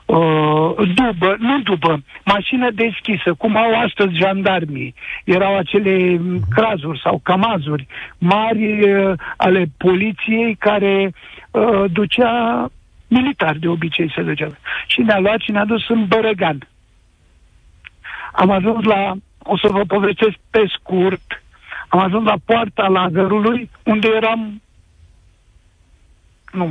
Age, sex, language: 60-79, male, Romanian